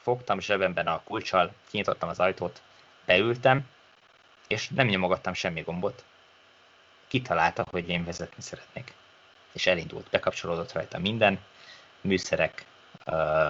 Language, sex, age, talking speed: Hungarian, male, 20-39, 105 wpm